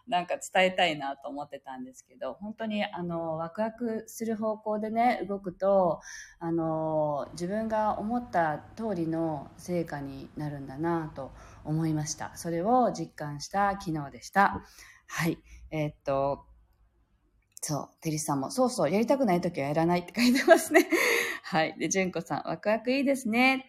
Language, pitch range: Japanese, 155-220 Hz